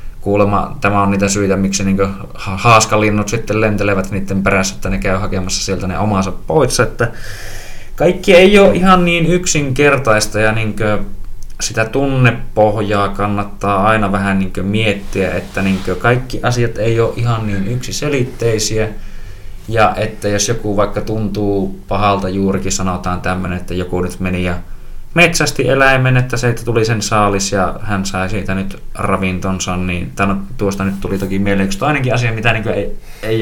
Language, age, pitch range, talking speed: Finnish, 20-39, 95-110 Hz, 160 wpm